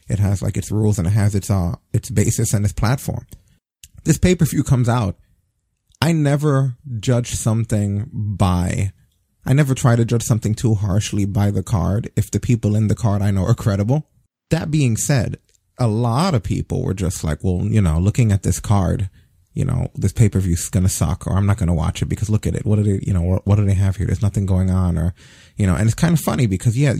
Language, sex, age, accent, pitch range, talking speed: English, male, 30-49, American, 95-120 Hz, 235 wpm